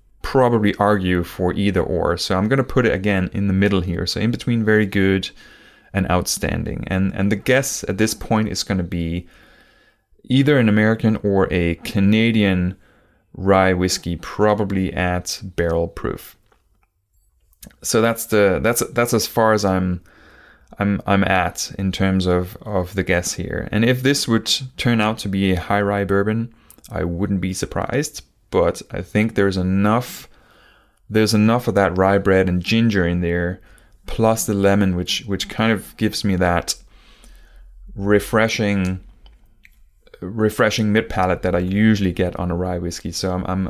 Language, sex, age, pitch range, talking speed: English, male, 20-39, 90-110 Hz, 165 wpm